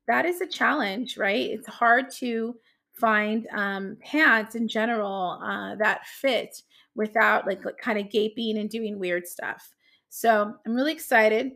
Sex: female